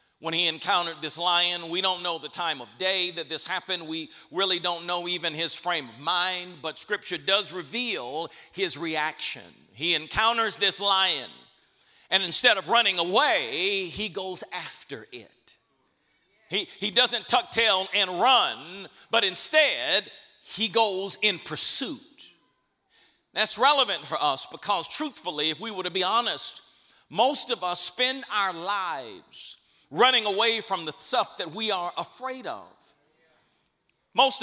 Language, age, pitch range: English, 40-59, 180-235 Hz